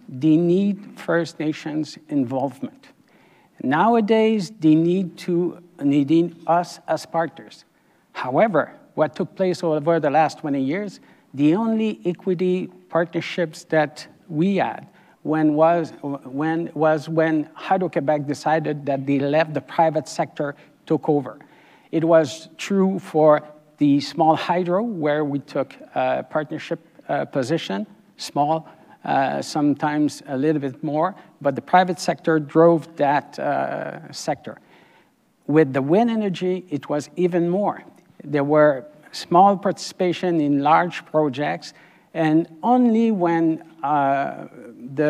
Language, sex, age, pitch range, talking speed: English, male, 60-79, 145-175 Hz, 120 wpm